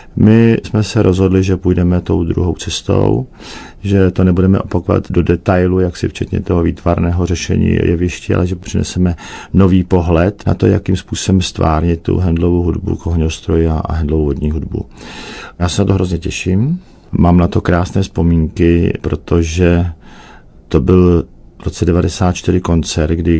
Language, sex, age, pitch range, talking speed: Czech, male, 50-69, 80-95 Hz, 150 wpm